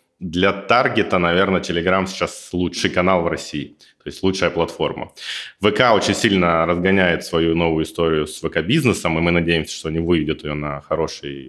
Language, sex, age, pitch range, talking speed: Russian, male, 20-39, 80-95 Hz, 165 wpm